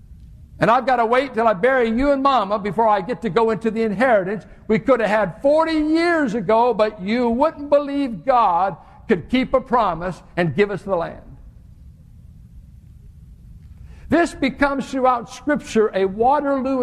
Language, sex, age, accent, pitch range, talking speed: English, male, 60-79, American, 195-255 Hz, 165 wpm